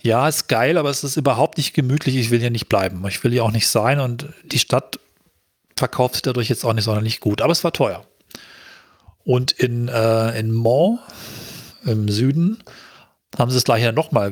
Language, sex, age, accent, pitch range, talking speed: German, male, 40-59, German, 115-140 Hz, 205 wpm